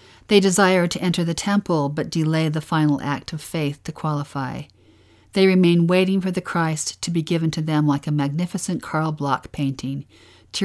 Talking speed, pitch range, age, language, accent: 185 wpm, 145-180 Hz, 50-69, English, American